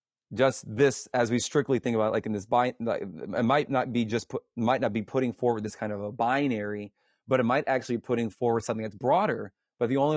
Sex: male